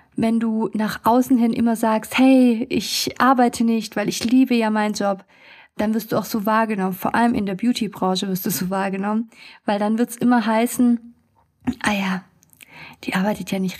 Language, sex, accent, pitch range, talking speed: German, female, German, 205-245 Hz, 190 wpm